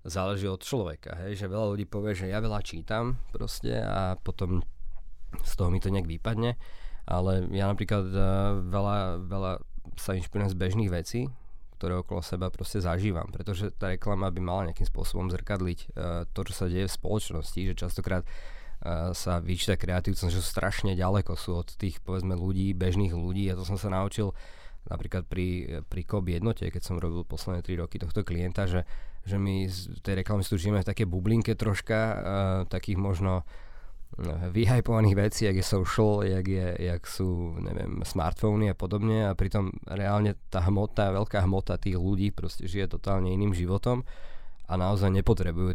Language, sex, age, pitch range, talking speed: Slovak, male, 20-39, 90-100 Hz, 175 wpm